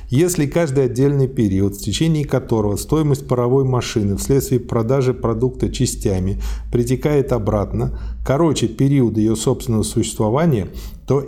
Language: Russian